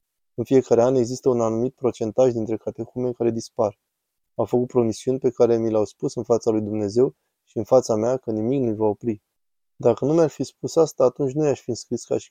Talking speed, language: 220 wpm, Romanian